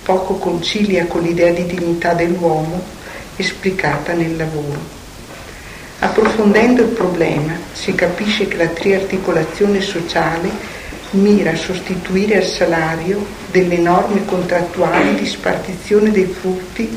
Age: 50-69